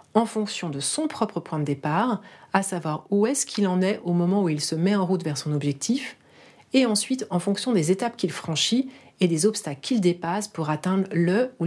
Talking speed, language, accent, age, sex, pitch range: 220 wpm, French, French, 40-59, female, 155-210 Hz